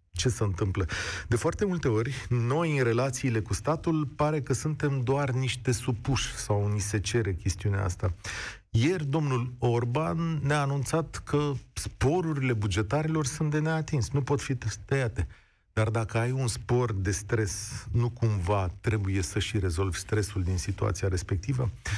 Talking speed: 155 wpm